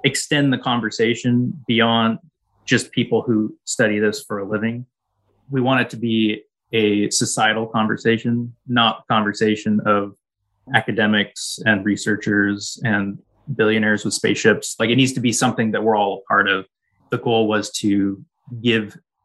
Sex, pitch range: male, 105-120 Hz